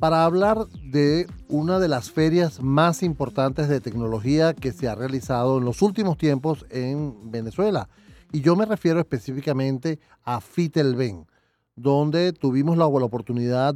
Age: 40-59